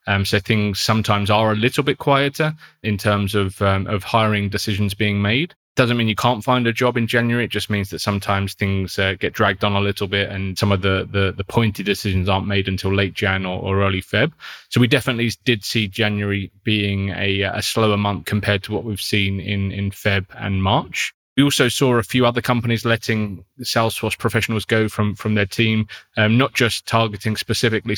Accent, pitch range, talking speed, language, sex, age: British, 100-115 Hz, 210 wpm, English, male, 20-39